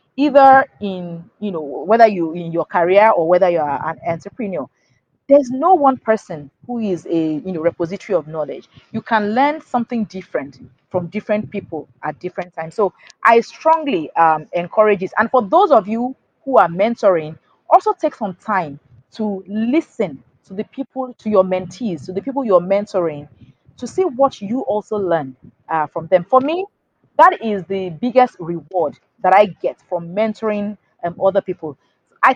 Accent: Nigerian